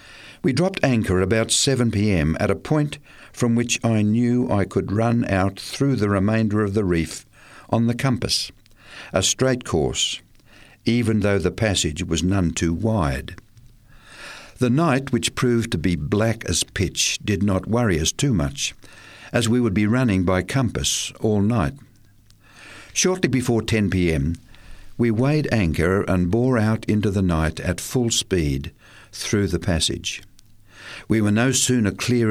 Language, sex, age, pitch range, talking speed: English, male, 60-79, 95-115 Hz, 155 wpm